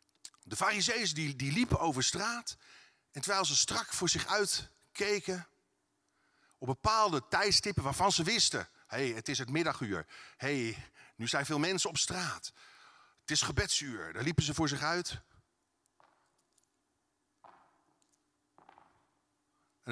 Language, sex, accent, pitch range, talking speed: Dutch, male, Dutch, 130-180 Hz, 135 wpm